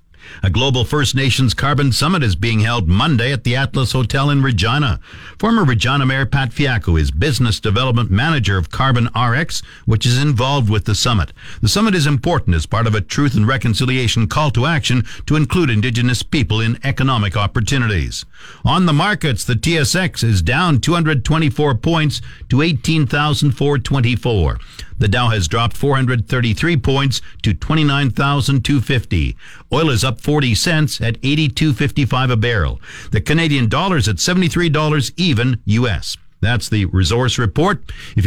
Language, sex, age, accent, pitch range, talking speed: English, male, 60-79, American, 115-150 Hz, 150 wpm